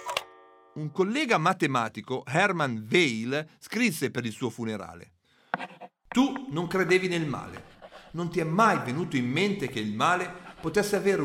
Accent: native